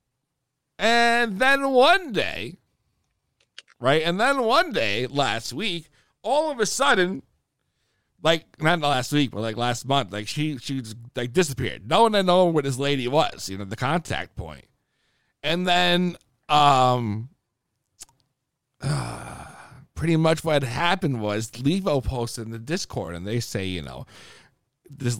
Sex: male